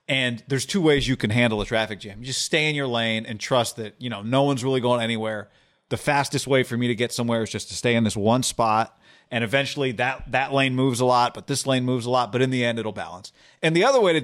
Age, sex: 40-59, male